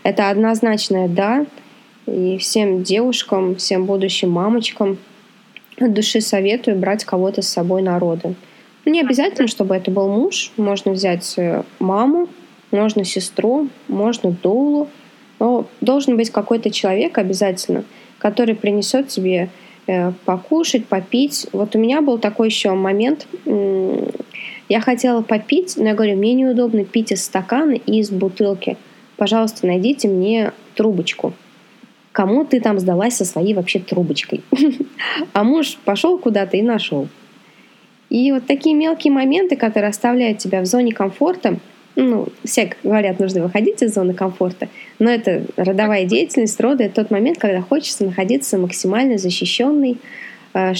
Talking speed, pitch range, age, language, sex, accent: 135 wpm, 195-250 Hz, 20-39, Russian, female, native